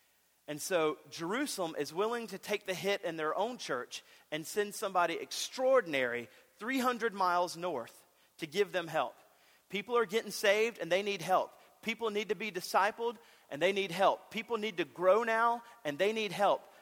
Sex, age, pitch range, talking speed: male, 40-59, 150-205 Hz, 180 wpm